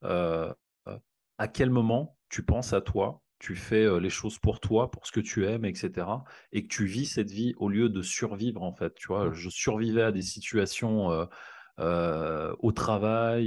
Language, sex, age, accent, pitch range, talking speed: French, male, 30-49, French, 95-115 Hz, 200 wpm